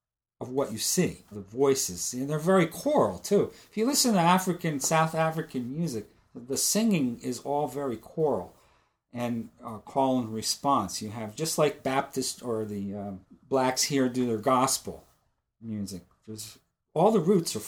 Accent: American